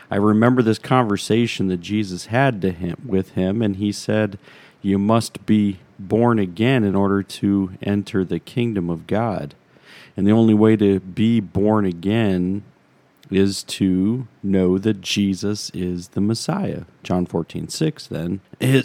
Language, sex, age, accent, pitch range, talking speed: English, male, 40-59, American, 95-120 Hz, 150 wpm